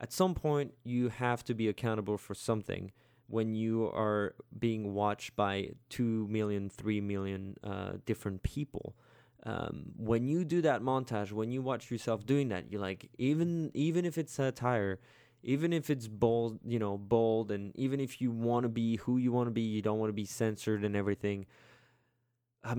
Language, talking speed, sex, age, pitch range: English, 175 wpm, male, 20-39, 105-130 Hz